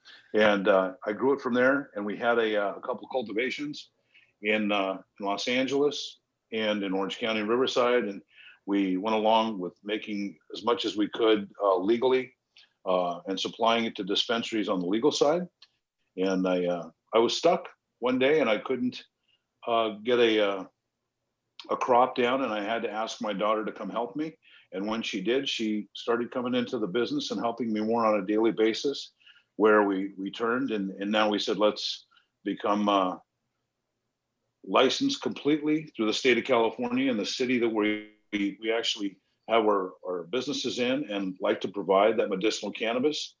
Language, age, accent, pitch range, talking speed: English, 50-69, American, 100-125 Hz, 185 wpm